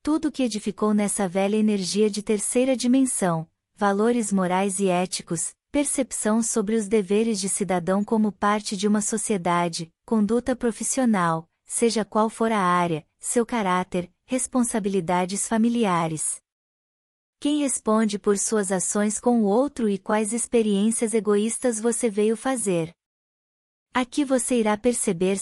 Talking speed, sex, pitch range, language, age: 130 wpm, female, 185-235 Hz, Portuguese, 20-39